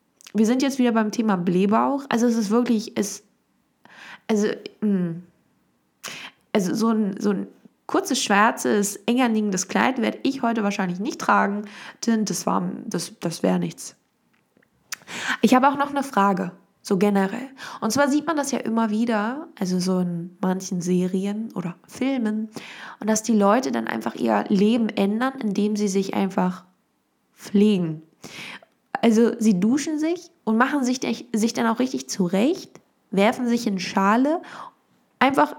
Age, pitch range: 20-39, 195-240 Hz